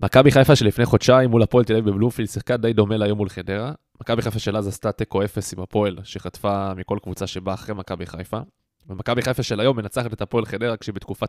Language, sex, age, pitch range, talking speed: Hebrew, male, 20-39, 95-115 Hz, 215 wpm